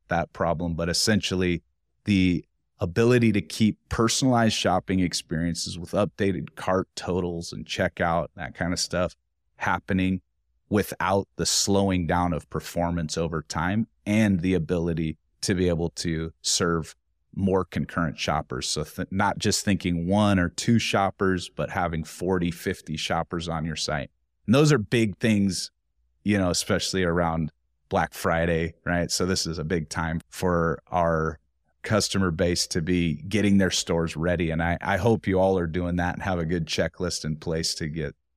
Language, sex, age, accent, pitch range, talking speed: English, male, 30-49, American, 80-95 Hz, 160 wpm